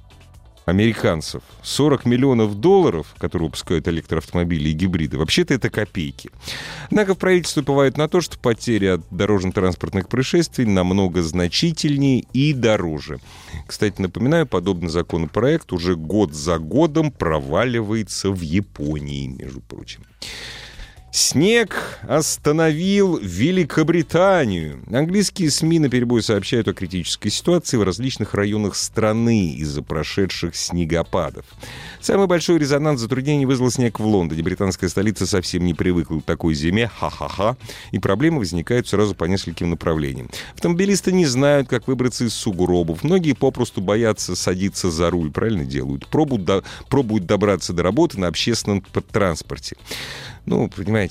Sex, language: male, Russian